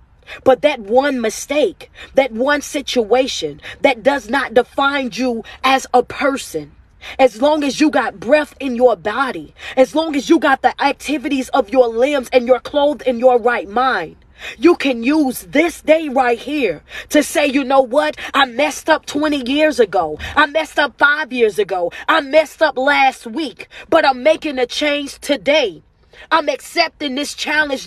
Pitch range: 255-315 Hz